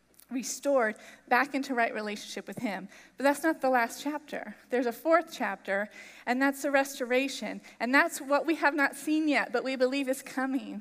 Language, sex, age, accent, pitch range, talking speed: English, female, 30-49, American, 225-275 Hz, 190 wpm